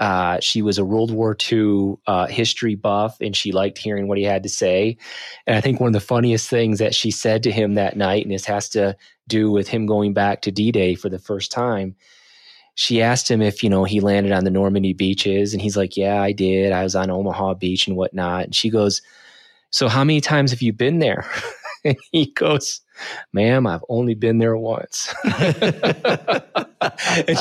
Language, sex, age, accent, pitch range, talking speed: English, male, 30-49, American, 100-120 Hz, 210 wpm